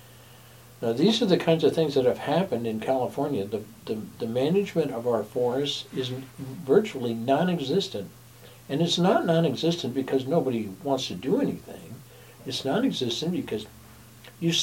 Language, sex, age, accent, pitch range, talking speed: English, male, 60-79, American, 115-145 Hz, 150 wpm